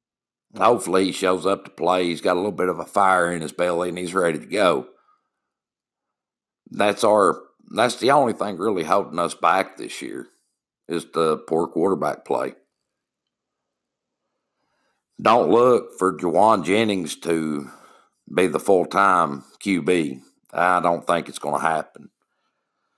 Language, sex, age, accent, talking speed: English, male, 60-79, American, 145 wpm